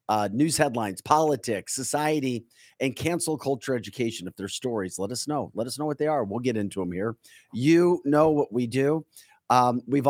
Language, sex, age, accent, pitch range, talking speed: English, male, 40-59, American, 105-135 Hz, 195 wpm